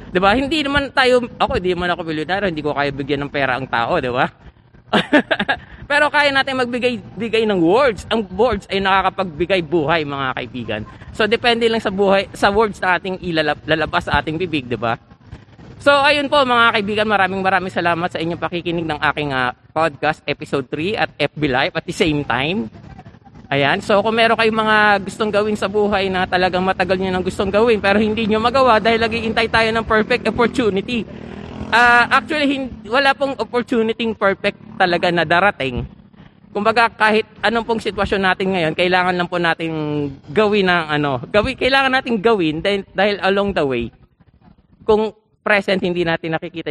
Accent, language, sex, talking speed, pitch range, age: native, Filipino, male, 175 wpm, 160-225 Hz, 20-39